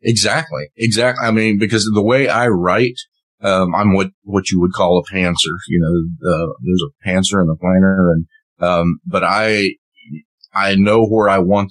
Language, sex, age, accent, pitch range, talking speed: English, male, 40-59, American, 85-105 Hz, 190 wpm